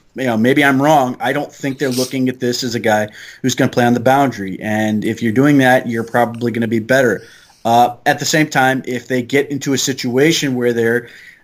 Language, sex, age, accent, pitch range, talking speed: English, male, 30-49, American, 115-135 Hz, 240 wpm